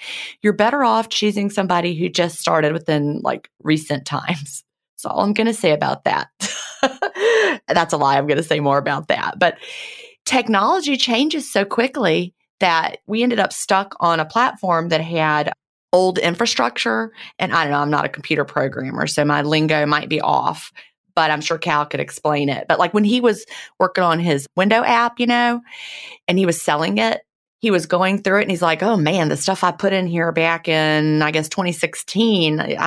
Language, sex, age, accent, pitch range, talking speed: English, female, 30-49, American, 150-200 Hz, 195 wpm